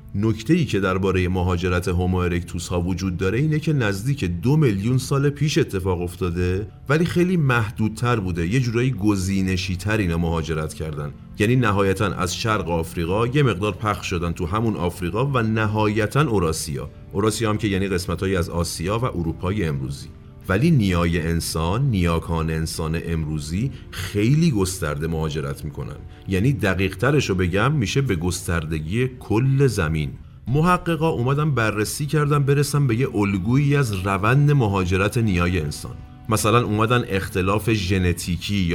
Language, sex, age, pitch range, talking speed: Persian, male, 40-59, 90-125 Hz, 140 wpm